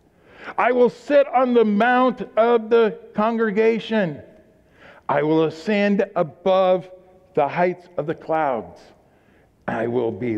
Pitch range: 170-245 Hz